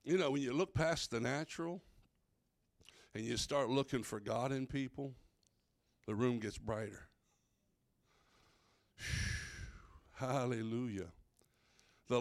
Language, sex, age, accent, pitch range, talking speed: English, male, 60-79, American, 110-140 Hz, 115 wpm